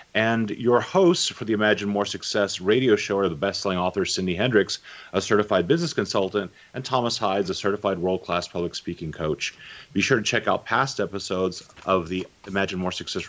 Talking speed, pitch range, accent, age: 185 wpm, 95-125 Hz, American, 30-49